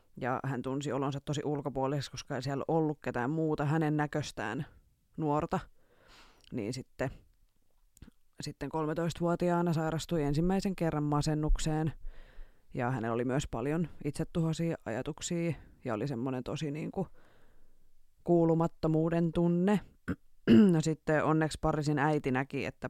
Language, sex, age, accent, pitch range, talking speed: Finnish, female, 20-39, native, 130-165 Hz, 120 wpm